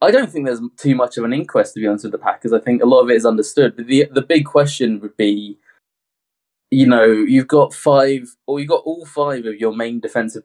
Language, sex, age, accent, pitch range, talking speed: English, male, 20-39, British, 115-140 Hz, 255 wpm